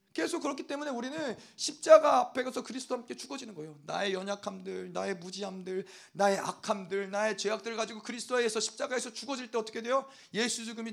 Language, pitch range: Korean, 200-255 Hz